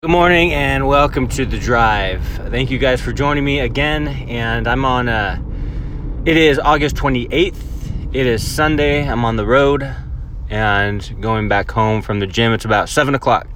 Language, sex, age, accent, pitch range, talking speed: English, male, 20-39, American, 100-120 Hz, 175 wpm